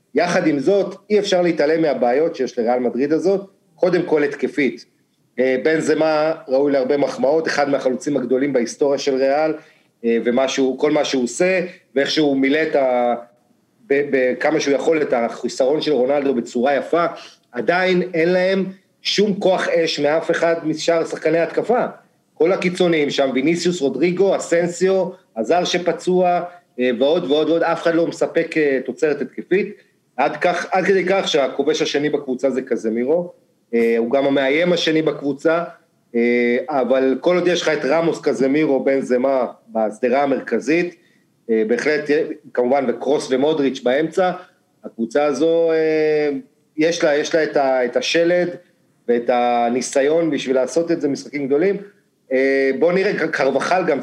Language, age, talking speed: English, 40-59, 120 wpm